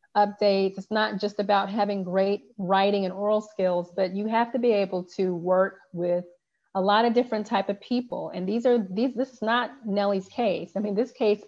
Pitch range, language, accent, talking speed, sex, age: 185-220 Hz, English, American, 210 wpm, female, 30-49